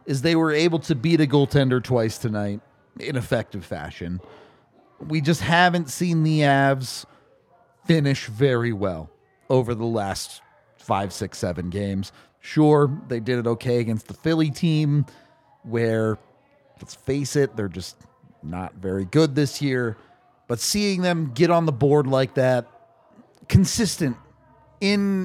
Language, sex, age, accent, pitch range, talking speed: English, male, 30-49, American, 120-160 Hz, 145 wpm